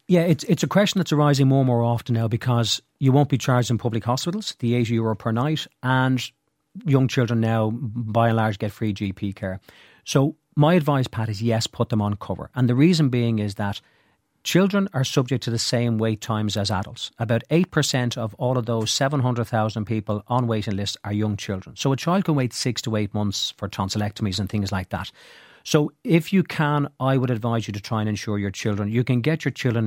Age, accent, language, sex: 40-59, Irish, English, male